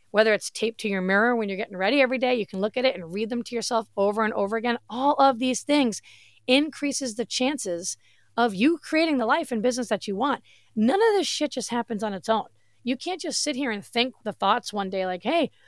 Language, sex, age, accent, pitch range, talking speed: English, female, 30-49, American, 200-265 Hz, 250 wpm